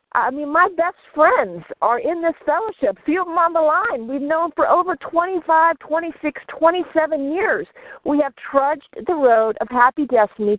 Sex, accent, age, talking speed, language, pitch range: female, American, 50-69, 170 wpm, English, 220-310 Hz